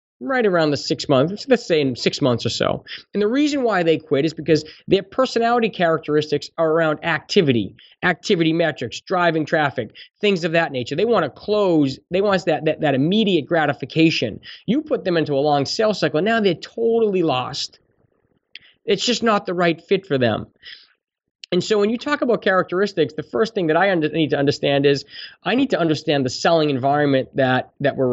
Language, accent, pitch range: English, American, 140-200 Hz